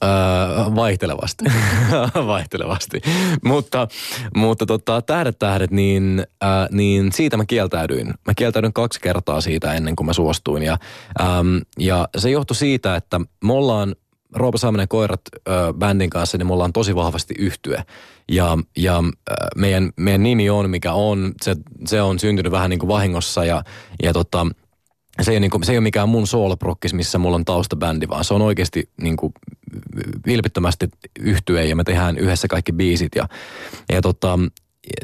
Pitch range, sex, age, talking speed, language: 85-110 Hz, male, 20-39, 150 wpm, Finnish